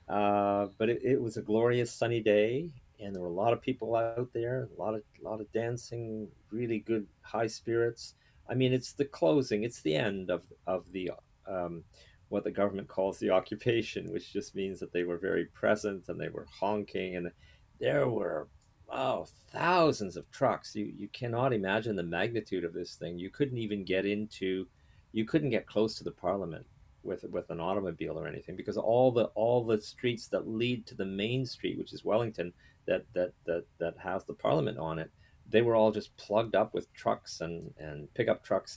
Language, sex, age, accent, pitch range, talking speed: English, male, 40-59, American, 95-115 Hz, 200 wpm